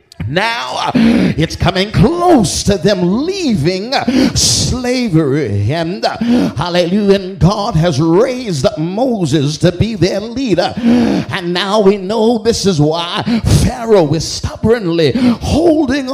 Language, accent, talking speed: English, American, 120 wpm